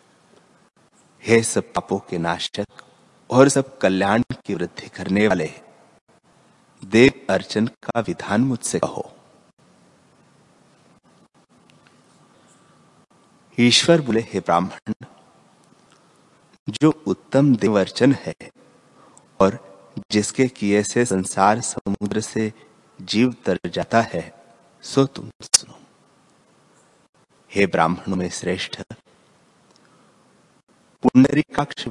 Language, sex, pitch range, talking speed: Hindi, male, 95-120 Hz, 85 wpm